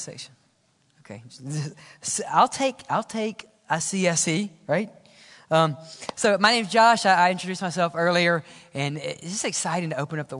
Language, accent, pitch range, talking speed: English, American, 155-220 Hz, 185 wpm